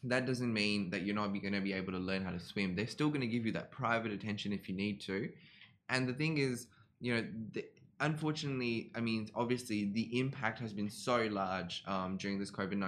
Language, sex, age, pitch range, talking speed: Arabic, male, 10-29, 95-115 Hz, 230 wpm